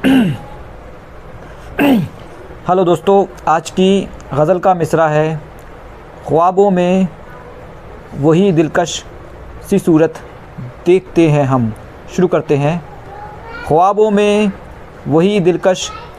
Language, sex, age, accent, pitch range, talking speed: Hindi, male, 50-69, native, 155-190 Hz, 90 wpm